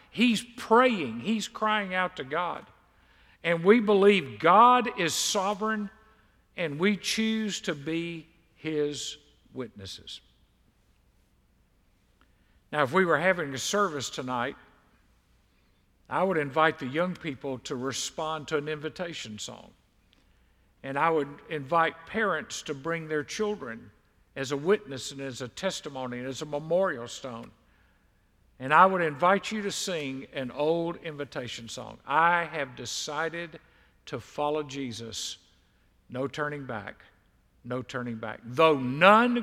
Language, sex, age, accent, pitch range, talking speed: English, male, 50-69, American, 130-185 Hz, 130 wpm